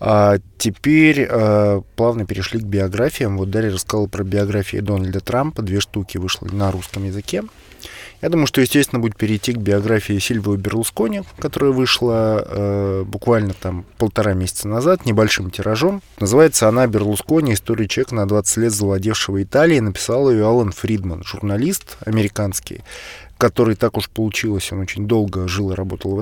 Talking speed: 155 wpm